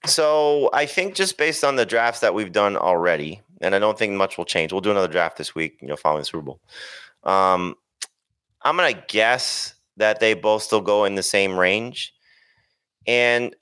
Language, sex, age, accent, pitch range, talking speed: English, male, 30-49, American, 90-135 Hz, 205 wpm